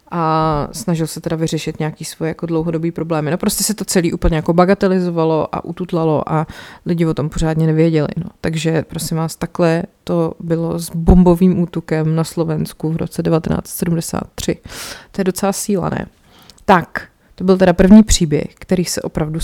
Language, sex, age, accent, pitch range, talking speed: Czech, female, 30-49, native, 160-185 Hz, 170 wpm